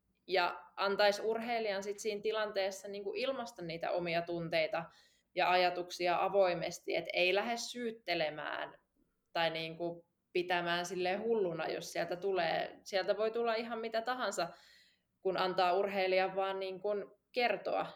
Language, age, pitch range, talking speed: Finnish, 20-39, 175-205 Hz, 125 wpm